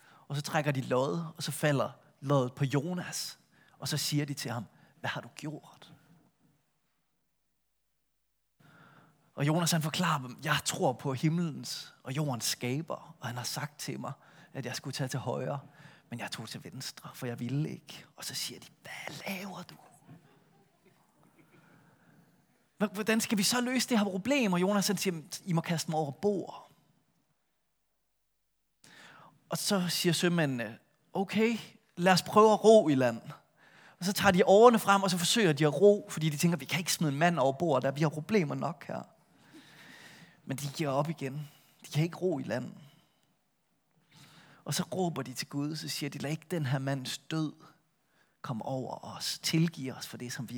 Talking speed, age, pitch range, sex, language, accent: 185 wpm, 30-49, 140-180 Hz, male, Danish, native